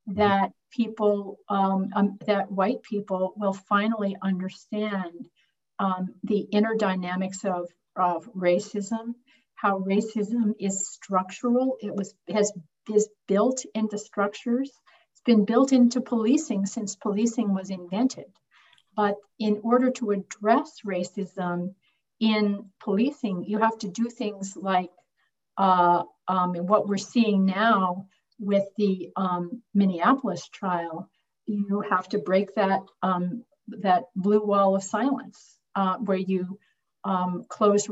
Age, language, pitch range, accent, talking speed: 50-69, English, 190-225 Hz, American, 125 wpm